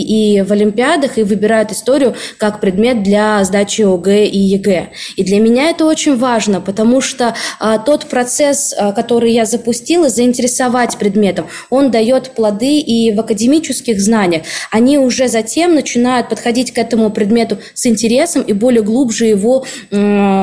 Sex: female